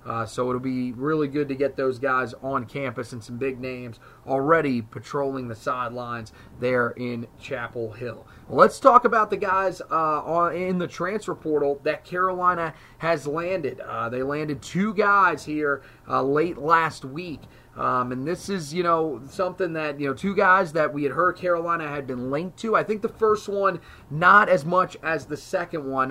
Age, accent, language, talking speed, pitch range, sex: 30-49, American, English, 185 wpm, 135-175 Hz, male